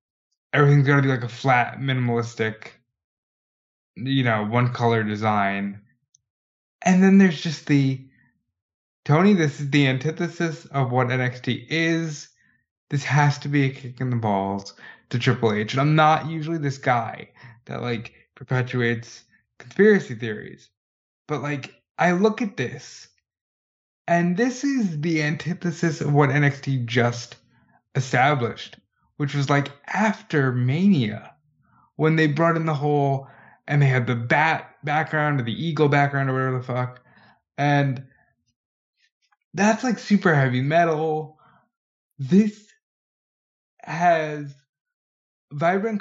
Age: 20-39